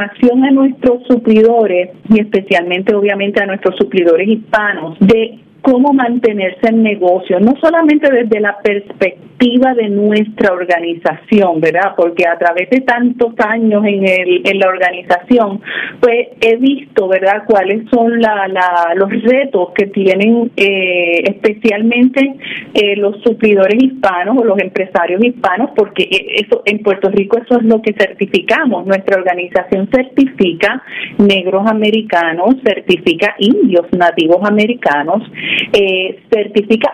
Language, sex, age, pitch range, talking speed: Spanish, female, 40-59, 190-235 Hz, 130 wpm